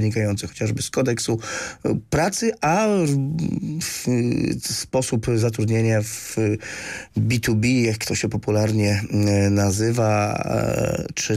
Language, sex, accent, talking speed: Polish, male, native, 90 wpm